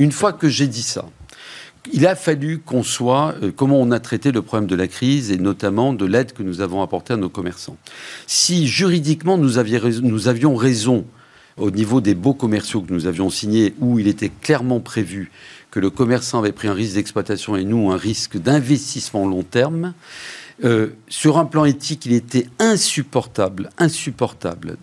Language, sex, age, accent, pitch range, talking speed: French, male, 50-69, French, 110-155 Hz, 185 wpm